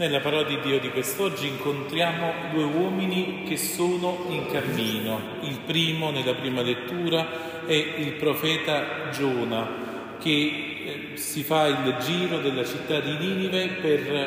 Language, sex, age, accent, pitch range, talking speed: Italian, male, 40-59, native, 135-165 Hz, 135 wpm